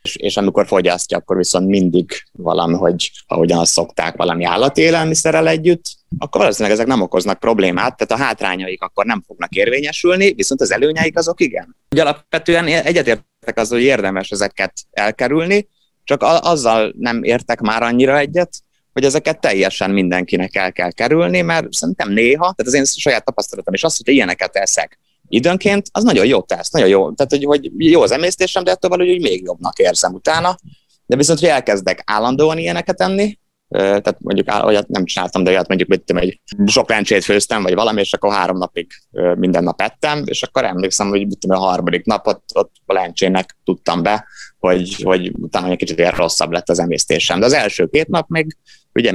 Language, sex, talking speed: Hungarian, male, 180 wpm